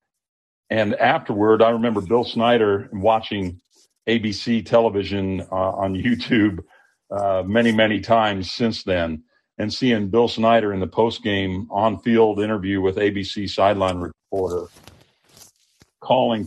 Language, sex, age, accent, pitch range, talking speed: English, male, 50-69, American, 95-115 Hz, 115 wpm